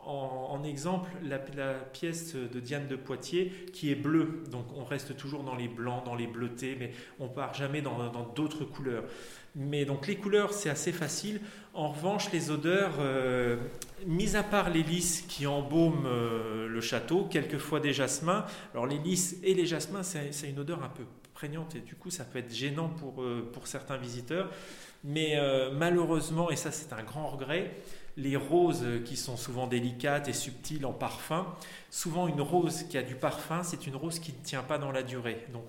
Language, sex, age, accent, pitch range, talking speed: French, male, 30-49, French, 125-160 Hz, 200 wpm